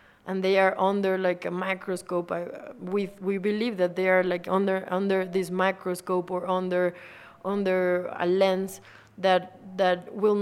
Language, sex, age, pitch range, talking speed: English, female, 20-39, 175-200 Hz, 155 wpm